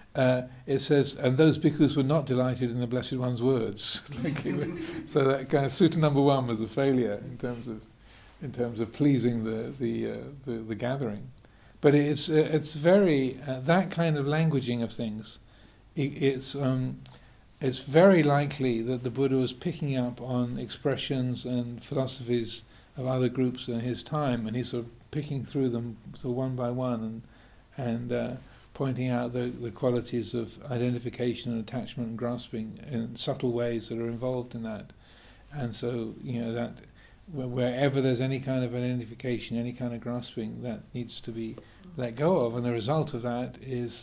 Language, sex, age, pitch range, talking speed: English, male, 50-69, 115-135 Hz, 185 wpm